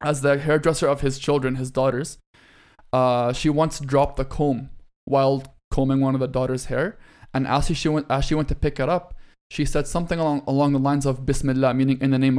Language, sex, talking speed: English, male, 220 wpm